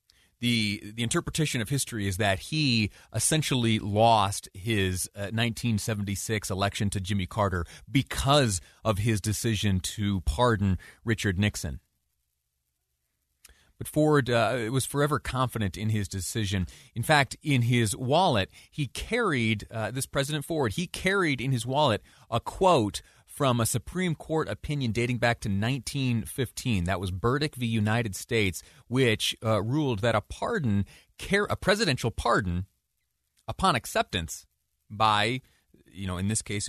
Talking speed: 135 wpm